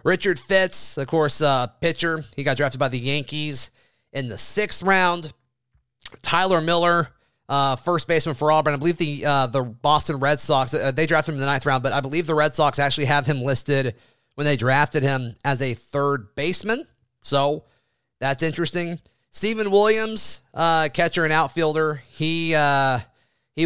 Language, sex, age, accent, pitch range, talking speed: English, male, 30-49, American, 125-155 Hz, 175 wpm